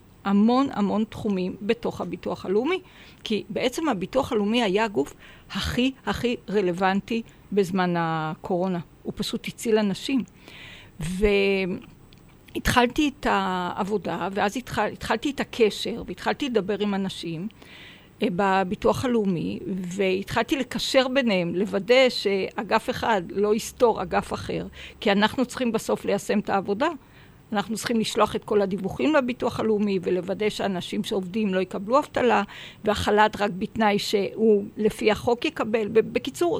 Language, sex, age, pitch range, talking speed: Hebrew, female, 50-69, 195-240 Hz, 120 wpm